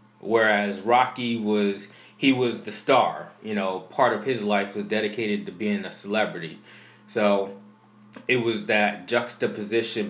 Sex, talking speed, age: male, 145 wpm, 20-39